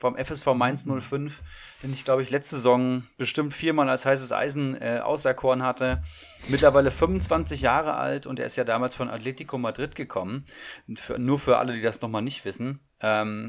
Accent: German